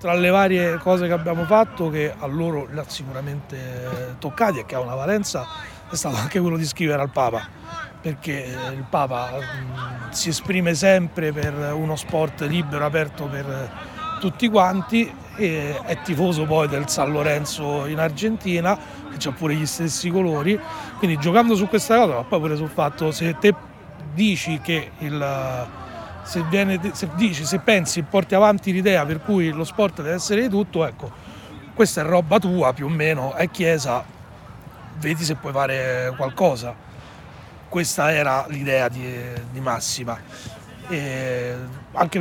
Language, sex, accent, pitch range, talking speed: Italian, male, native, 140-180 Hz, 155 wpm